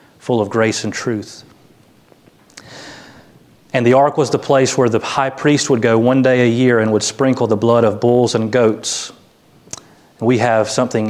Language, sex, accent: English, male, American